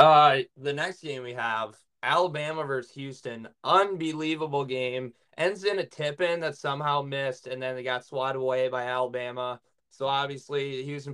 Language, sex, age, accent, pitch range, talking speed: English, male, 20-39, American, 130-150 Hz, 155 wpm